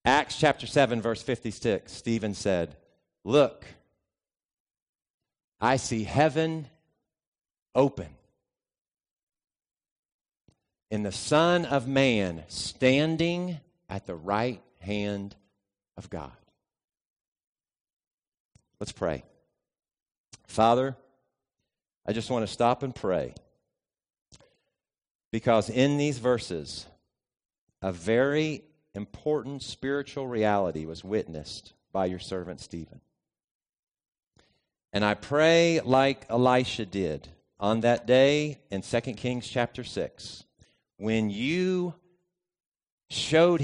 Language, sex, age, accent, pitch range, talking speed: English, male, 50-69, American, 100-140 Hz, 90 wpm